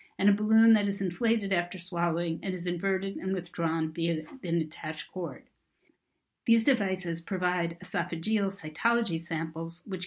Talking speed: 145 wpm